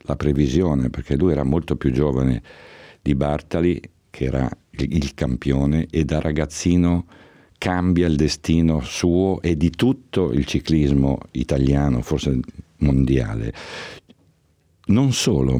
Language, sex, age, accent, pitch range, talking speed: Italian, male, 60-79, native, 65-85 Hz, 120 wpm